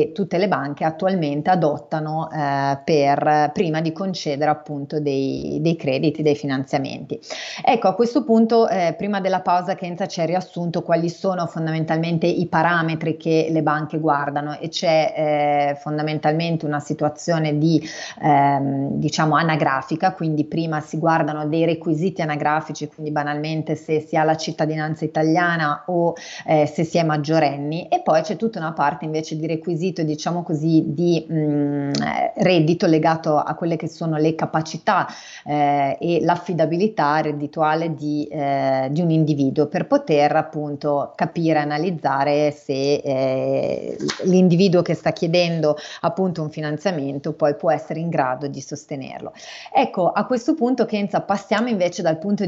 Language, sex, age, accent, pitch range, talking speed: Italian, female, 30-49, native, 150-175 Hz, 145 wpm